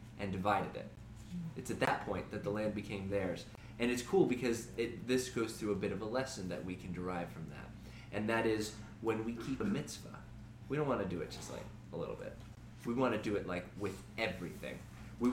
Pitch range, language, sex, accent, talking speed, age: 105-130 Hz, English, male, American, 230 wpm, 20-39